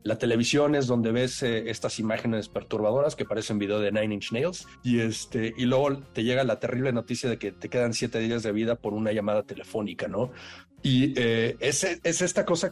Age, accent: 40-59, Mexican